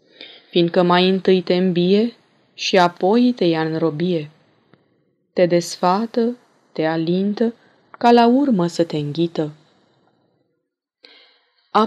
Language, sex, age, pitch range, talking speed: Romanian, female, 20-39, 170-215 Hz, 110 wpm